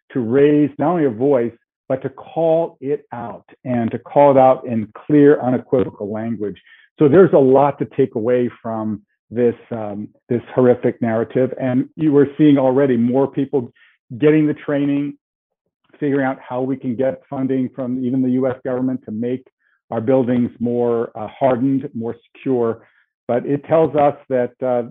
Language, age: English, 50-69